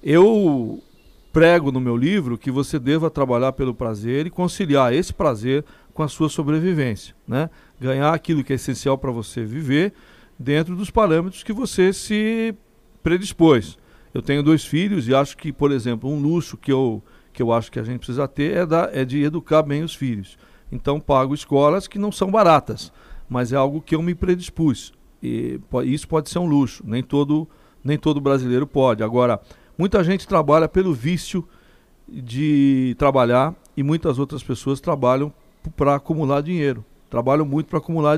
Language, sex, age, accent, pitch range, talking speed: Portuguese, male, 50-69, Brazilian, 125-160 Hz, 165 wpm